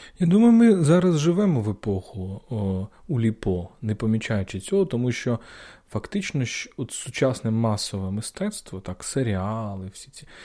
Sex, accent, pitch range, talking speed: male, native, 100-135 Hz, 140 wpm